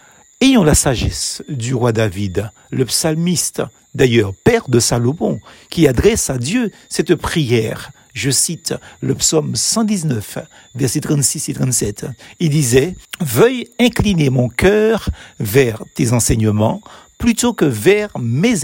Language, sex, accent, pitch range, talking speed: French, male, French, 125-195 Hz, 130 wpm